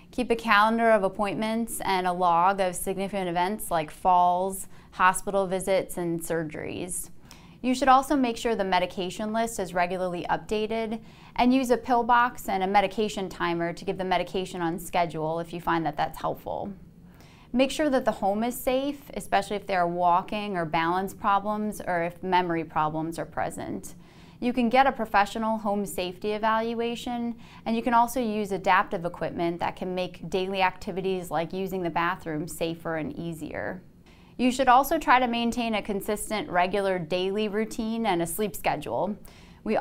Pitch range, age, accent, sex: 175-225 Hz, 20-39, American, female